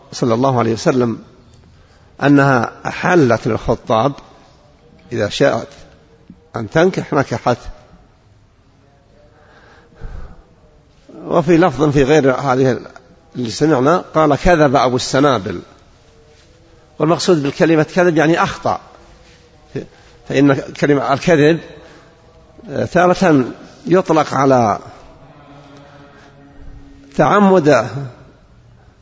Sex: male